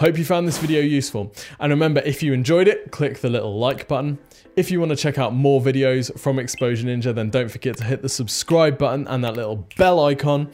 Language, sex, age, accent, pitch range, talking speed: English, male, 20-39, British, 110-145 Hz, 235 wpm